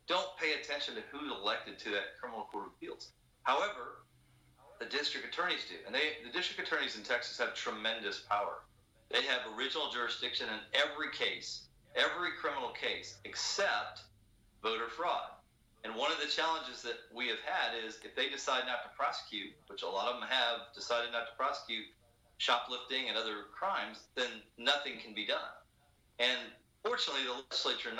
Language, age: English, 40-59